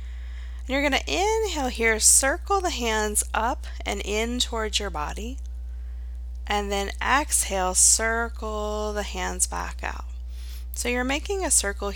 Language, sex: English, female